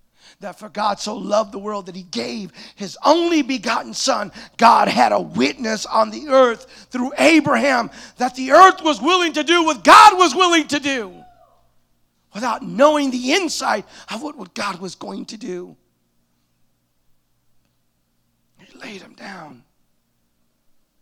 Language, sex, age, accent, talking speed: English, male, 40-59, American, 150 wpm